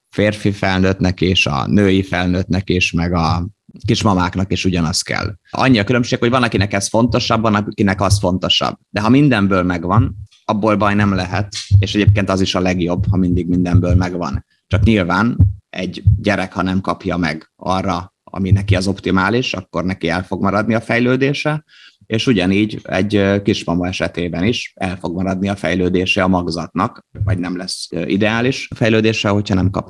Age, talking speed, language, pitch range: 30-49, 170 wpm, Hungarian, 90-105 Hz